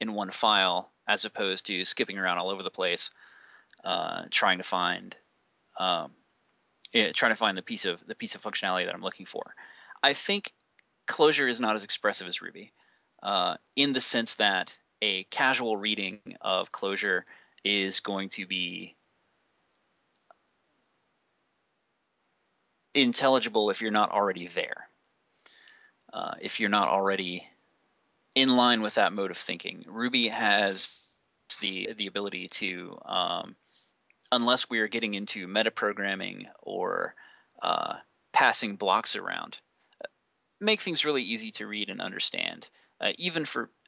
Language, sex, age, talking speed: English, male, 20-39, 140 wpm